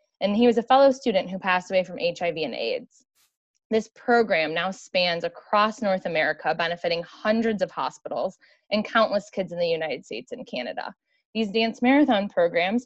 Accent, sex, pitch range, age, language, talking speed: American, female, 170-235 Hz, 20-39, English, 175 wpm